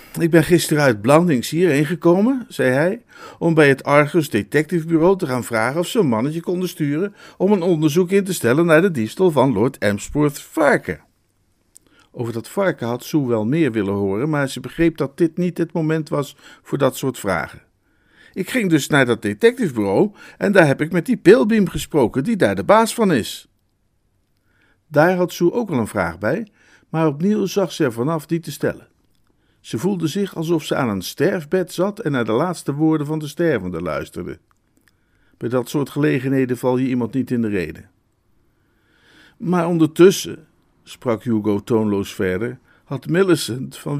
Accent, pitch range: Dutch, 120-175 Hz